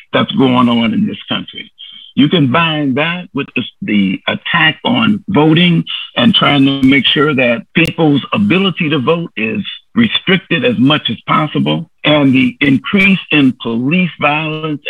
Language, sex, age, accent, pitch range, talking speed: English, male, 60-79, American, 140-200 Hz, 145 wpm